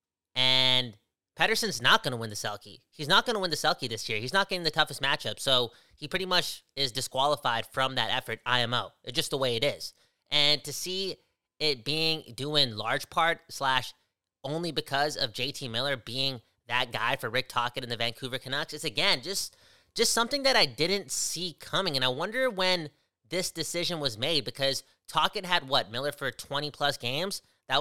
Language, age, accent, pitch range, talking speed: English, 20-39, American, 125-160 Hz, 195 wpm